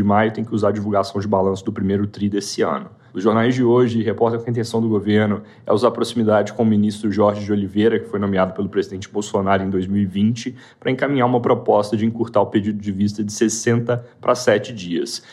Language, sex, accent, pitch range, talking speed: Portuguese, male, Brazilian, 105-120 Hz, 220 wpm